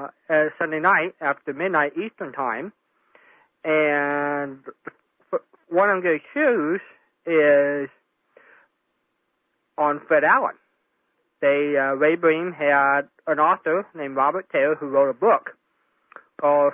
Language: English